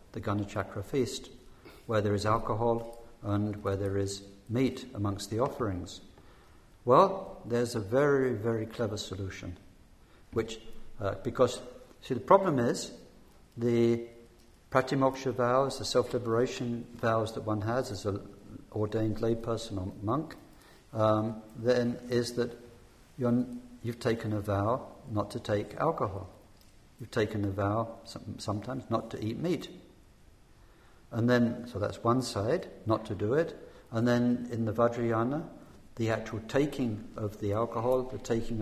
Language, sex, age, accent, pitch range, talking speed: English, male, 60-79, British, 105-125 Hz, 140 wpm